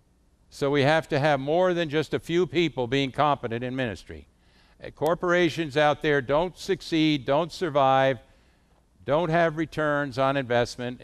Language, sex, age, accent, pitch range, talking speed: English, male, 60-79, American, 120-165 Hz, 145 wpm